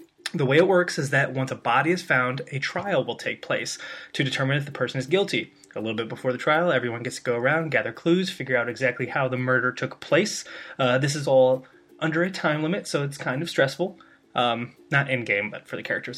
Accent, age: American, 20-39